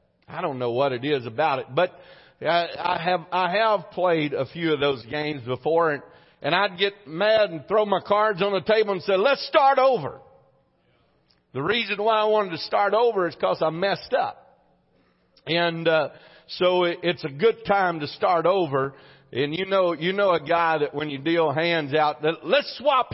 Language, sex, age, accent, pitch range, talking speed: English, male, 50-69, American, 140-190 Hz, 200 wpm